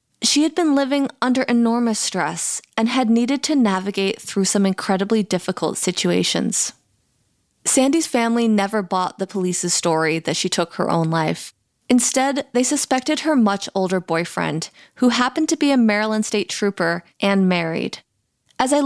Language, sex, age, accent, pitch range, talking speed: English, female, 20-39, American, 180-250 Hz, 155 wpm